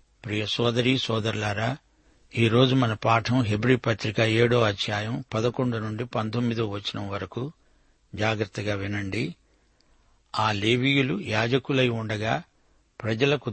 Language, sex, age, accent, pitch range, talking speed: Telugu, male, 60-79, native, 110-130 Hz, 100 wpm